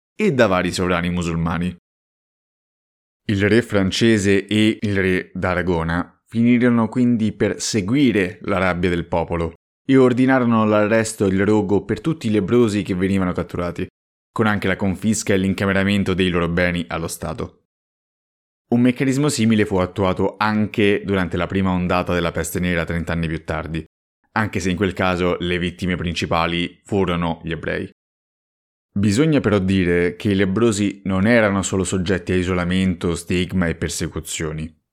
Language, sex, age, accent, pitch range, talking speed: Italian, male, 30-49, native, 85-105 Hz, 150 wpm